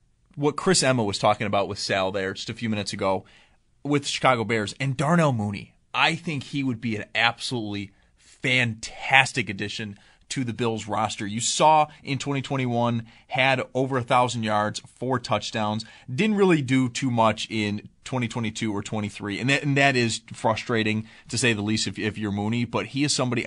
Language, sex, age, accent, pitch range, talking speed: English, male, 30-49, American, 105-130 Hz, 180 wpm